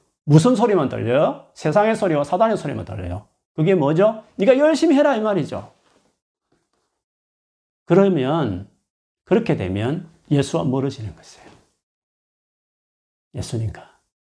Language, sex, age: Korean, male, 40-59